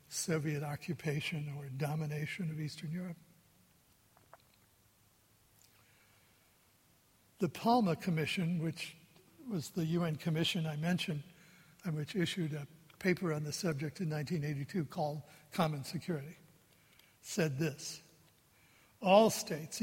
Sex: male